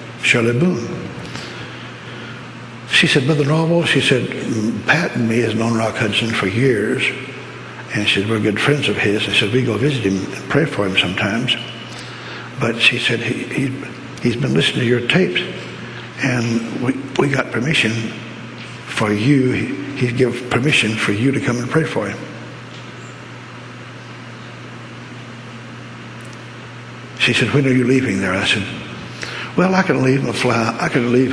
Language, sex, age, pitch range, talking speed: English, male, 60-79, 105-125 Hz, 165 wpm